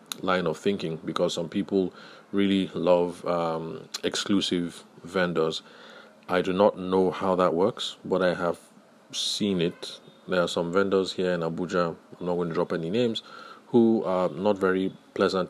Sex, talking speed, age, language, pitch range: male, 165 wpm, 30-49, English, 85-95 Hz